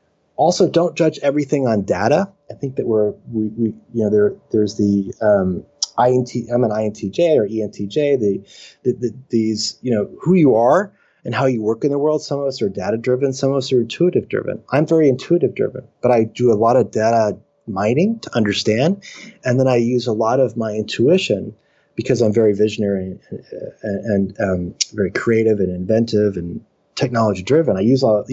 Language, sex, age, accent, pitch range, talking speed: English, male, 30-49, American, 105-130 Hz, 185 wpm